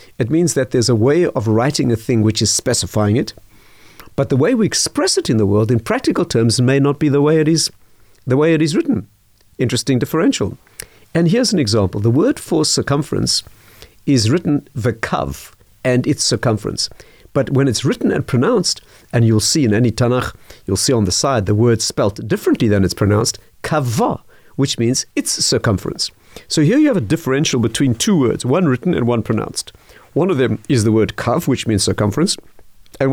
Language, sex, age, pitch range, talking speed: English, male, 50-69, 110-140 Hz, 195 wpm